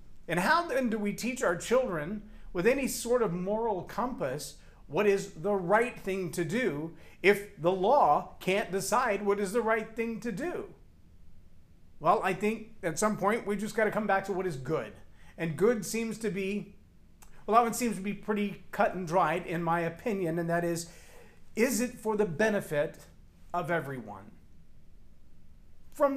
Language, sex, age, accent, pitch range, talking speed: English, male, 40-59, American, 160-215 Hz, 180 wpm